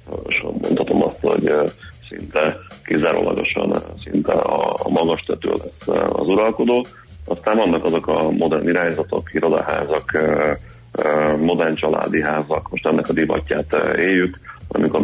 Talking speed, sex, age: 115 wpm, male, 30-49